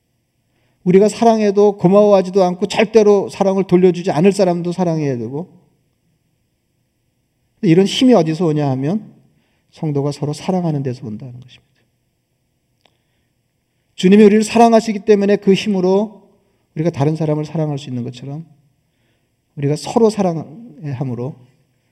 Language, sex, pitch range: Korean, male, 135-180 Hz